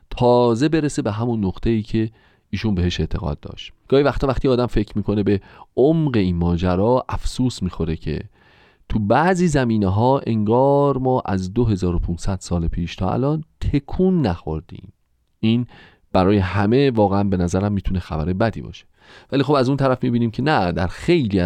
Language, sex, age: Persian, male, 40-59